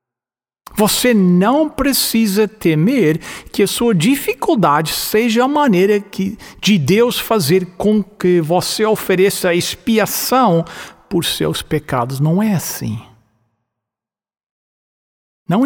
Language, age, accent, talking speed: English, 60-79, Brazilian, 100 wpm